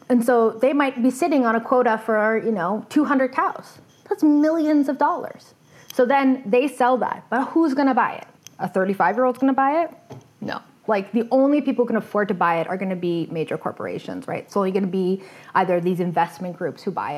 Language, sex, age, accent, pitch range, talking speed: English, female, 20-39, American, 180-240 Hz, 215 wpm